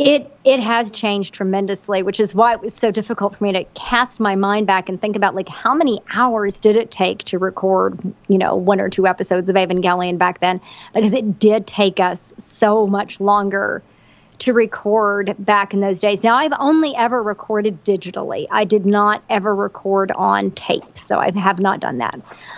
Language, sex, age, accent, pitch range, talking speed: English, male, 40-59, American, 200-230 Hz, 195 wpm